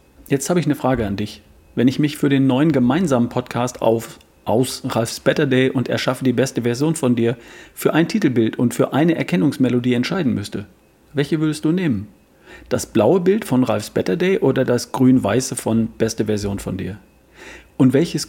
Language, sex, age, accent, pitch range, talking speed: German, male, 40-59, German, 110-140 Hz, 185 wpm